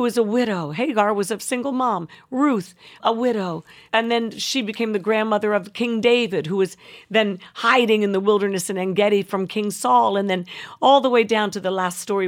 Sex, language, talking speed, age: female, English, 205 wpm, 50-69